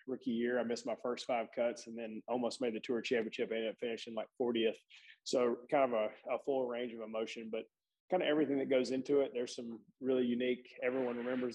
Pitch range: 110-125 Hz